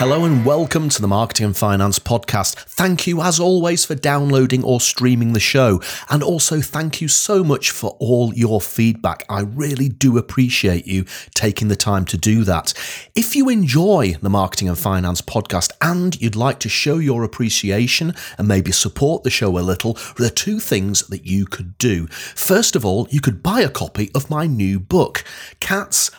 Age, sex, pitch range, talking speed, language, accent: 30-49, male, 100-145 Hz, 190 wpm, English, British